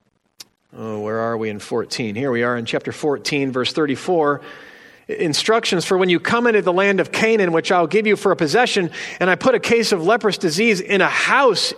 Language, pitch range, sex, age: English, 135-190 Hz, male, 40-59